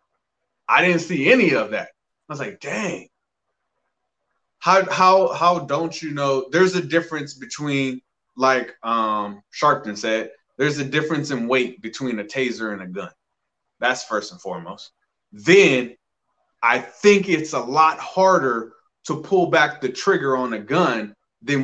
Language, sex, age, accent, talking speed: English, male, 20-39, American, 155 wpm